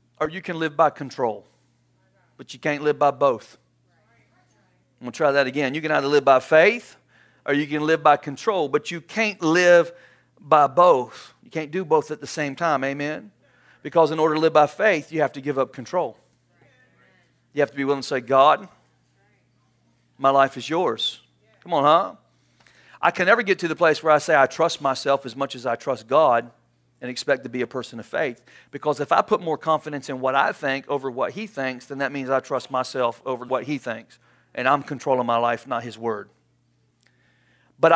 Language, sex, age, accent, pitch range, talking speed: English, male, 40-59, American, 120-155 Hz, 210 wpm